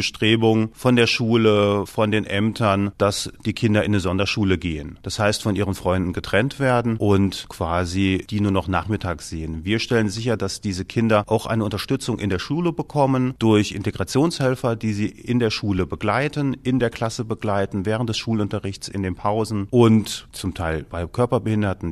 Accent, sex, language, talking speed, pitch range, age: German, male, German, 175 wpm, 95-110 Hz, 40-59